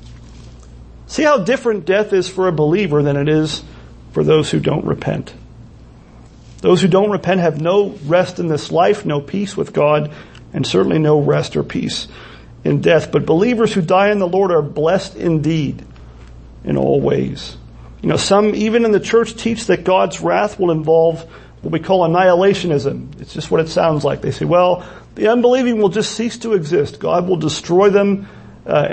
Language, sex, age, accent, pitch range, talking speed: English, male, 40-59, American, 140-200 Hz, 185 wpm